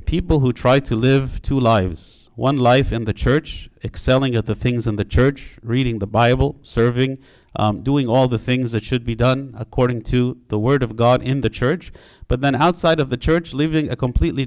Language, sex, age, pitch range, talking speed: English, male, 50-69, 115-135 Hz, 205 wpm